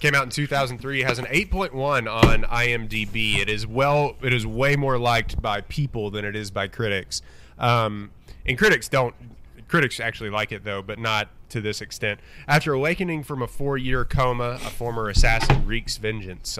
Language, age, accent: English, 20-39, American